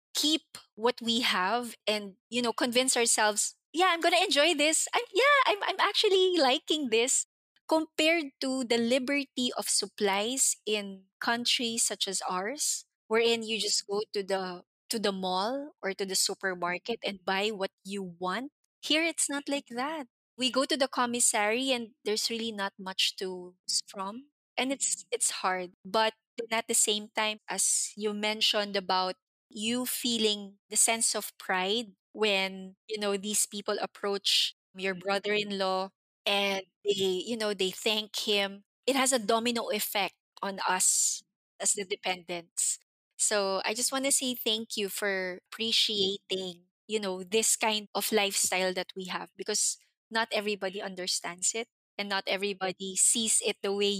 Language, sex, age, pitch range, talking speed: English, female, 20-39, 195-245 Hz, 160 wpm